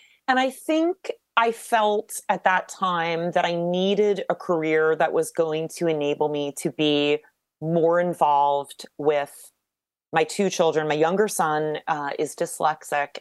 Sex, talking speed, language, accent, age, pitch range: female, 150 wpm, English, American, 30-49, 145-170 Hz